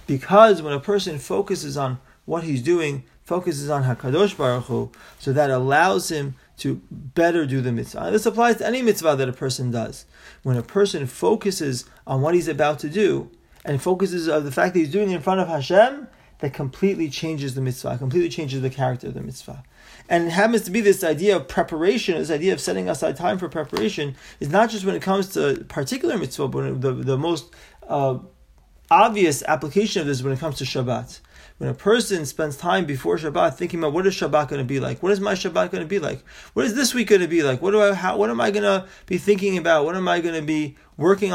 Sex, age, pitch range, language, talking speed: male, 30-49, 135-190 Hz, English, 230 wpm